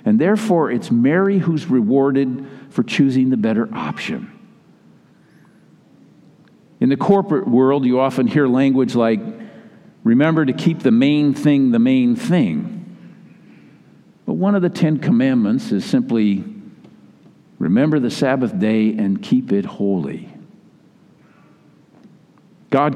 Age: 50-69